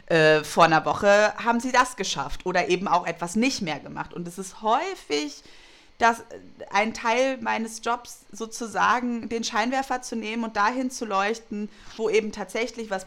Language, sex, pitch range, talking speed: German, female, 195-240 Hz, 165 wpm